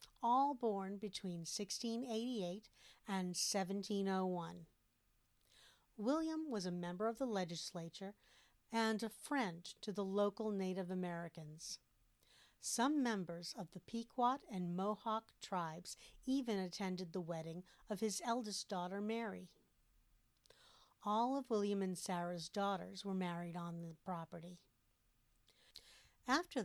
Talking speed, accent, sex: 115 wpm, American, female